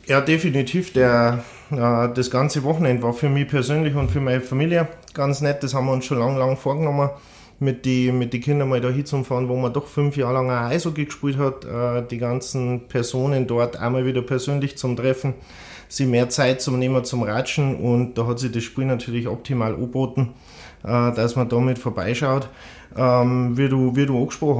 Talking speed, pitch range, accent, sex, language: 195 wpm, 120-140 Hz, German, male, German